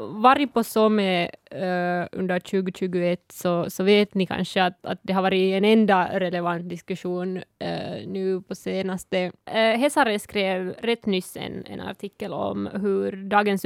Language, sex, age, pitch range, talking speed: Swedish, female, 20-39, 185-210 Hz, 155 wpm